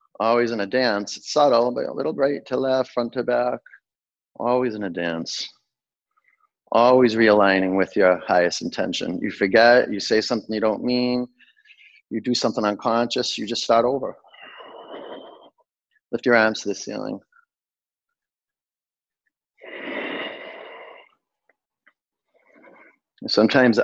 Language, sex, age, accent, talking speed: English, male, 30-49, American, 120 wpm